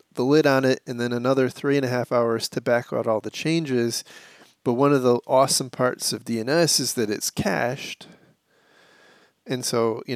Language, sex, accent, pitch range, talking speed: English, male, American, 120-145 Hz, 195 wpm